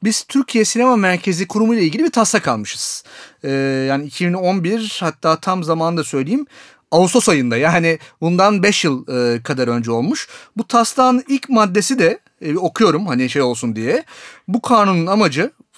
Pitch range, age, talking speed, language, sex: 155-210 Hz, 40-59, 155 wpm, Turkish, male